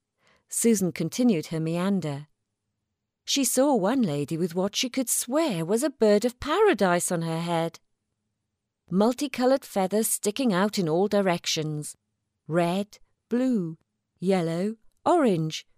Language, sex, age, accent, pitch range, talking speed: English, female, 40-59, British, 155-230 Hz, 120 wpm